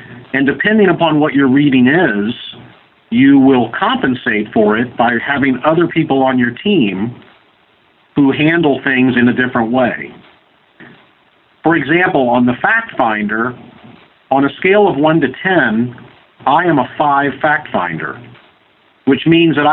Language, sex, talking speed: English, male, 145 wpm